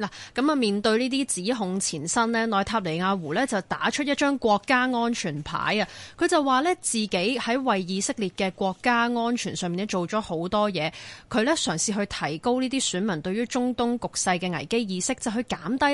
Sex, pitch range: female, 180-240 Hz